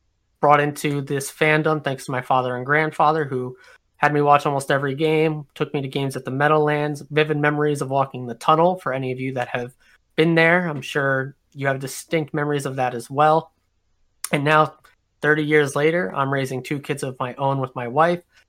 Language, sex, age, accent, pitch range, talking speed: English, male, 20-39, American, 130-155 Hz, 205 wpm